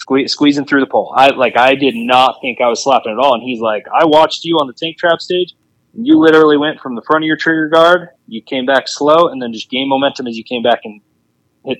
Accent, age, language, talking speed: American, 20-39, English, 265 wpm